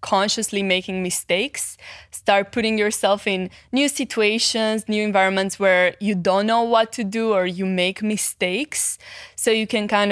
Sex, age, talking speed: female, 20-39, 155 wpm